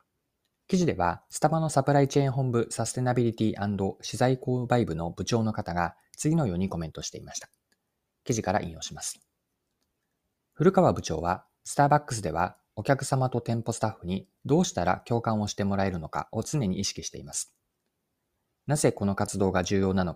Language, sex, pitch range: Japanese, male, 95-130 Hz